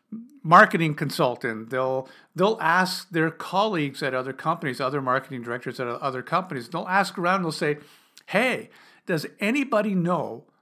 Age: 50-69